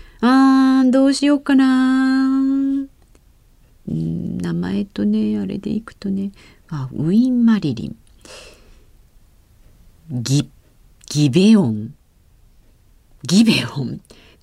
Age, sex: 40-59, female